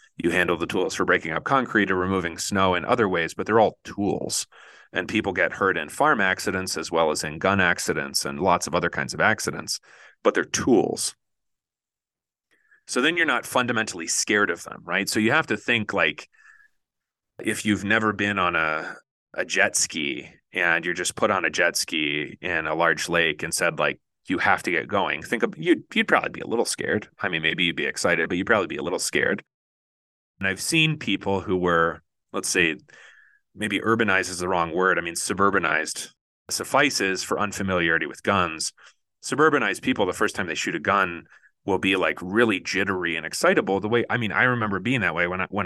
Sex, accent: male, American